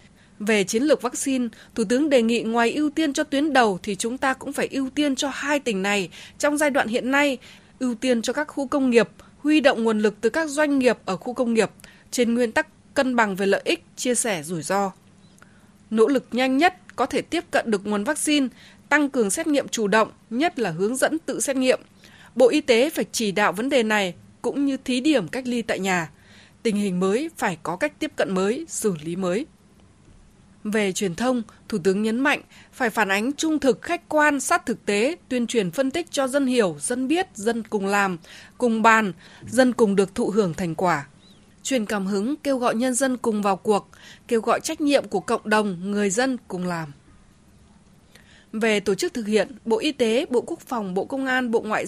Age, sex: 20-39, female